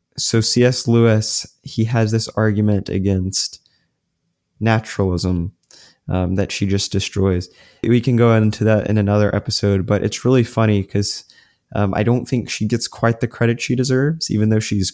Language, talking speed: English, 160 wpm